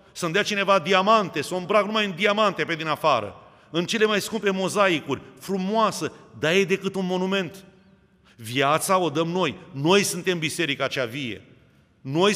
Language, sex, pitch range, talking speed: Romanian, male, 145-185 Hz, 170 wpm